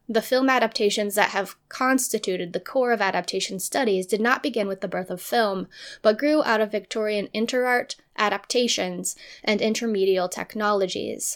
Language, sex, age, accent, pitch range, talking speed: English, female, 10-29, American, 195-235 Hz, 155 wpm